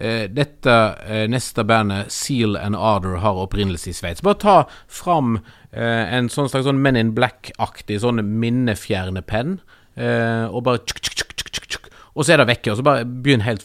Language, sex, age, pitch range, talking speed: English, male, 30-49, 100-125 Hz, 155 wpm